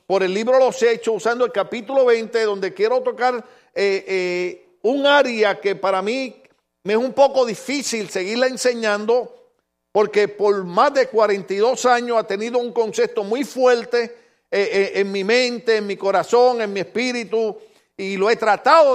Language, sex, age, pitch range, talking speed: Spanish, male, 50-69, 190-235 Hz, 170 wpm